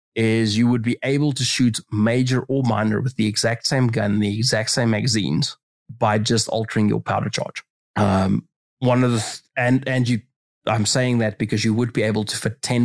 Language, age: English, 20-39